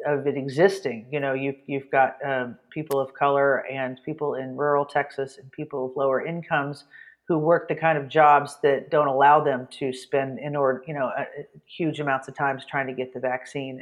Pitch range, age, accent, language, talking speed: 135-160 Hz, 40-59, American, English, 215 wpm